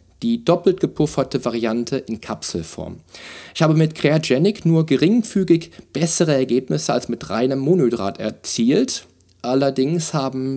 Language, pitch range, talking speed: German, 95-135 Hz, 120 wpm